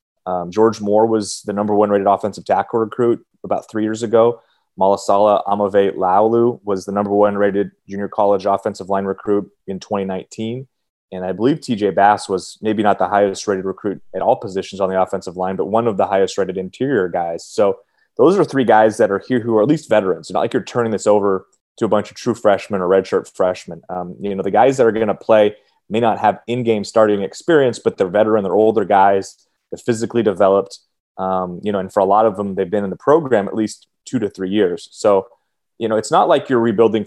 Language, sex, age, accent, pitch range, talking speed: English, male, 30-49, American, 95-110 Hz, 225 wpm